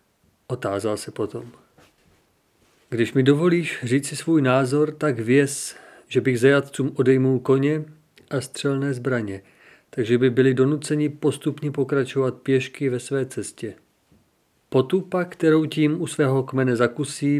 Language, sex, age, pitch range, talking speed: Czech, male, 40-59, 125-145 Hz, 130 wpm